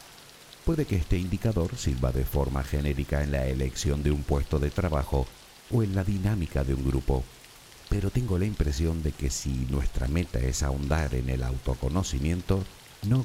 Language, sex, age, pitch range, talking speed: Spanish, male, 50-69, 70-100 Hz, 170 wpm